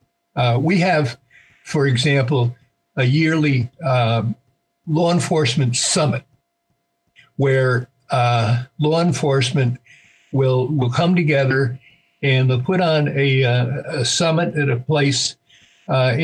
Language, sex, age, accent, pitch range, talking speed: English, male, 60-79, American, 120-145 Hz, 115 wpm